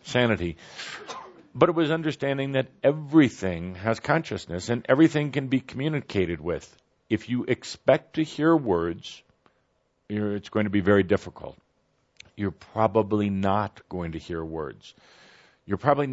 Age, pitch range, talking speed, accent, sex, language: 50-69, 95-125 Hz, 135 wpm, American, male, English